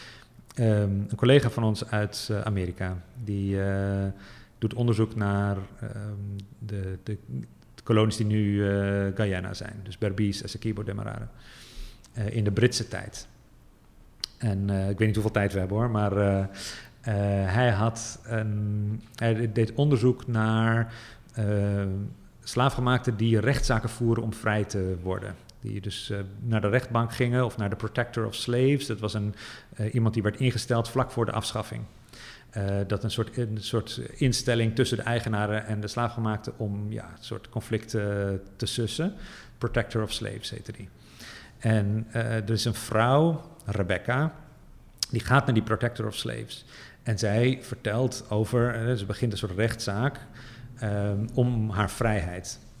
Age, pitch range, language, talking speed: 40-59, 105-120 Hz, Dutch, 160 wpm